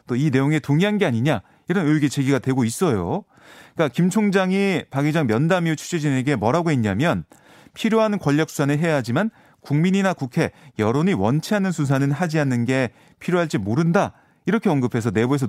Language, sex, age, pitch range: Korean, male, 30-49, 130-170 Hz